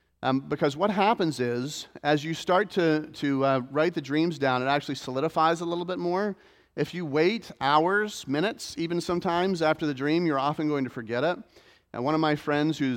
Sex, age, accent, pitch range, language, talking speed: male, 40-59, American, 125-160 Hz, English, 205 wpm